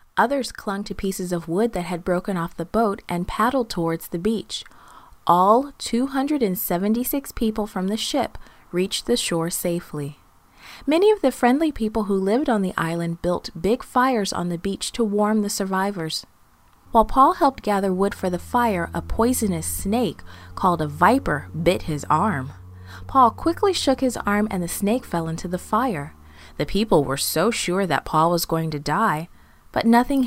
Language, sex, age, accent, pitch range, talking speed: English, female, 30-49, American, 175-240 Hz, 175 wpm